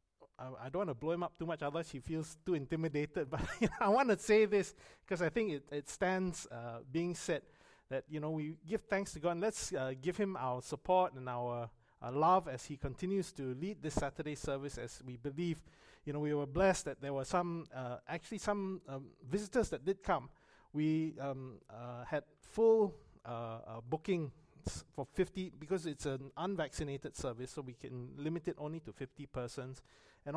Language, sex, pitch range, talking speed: English, male, 135-180 Hz, 200 wpm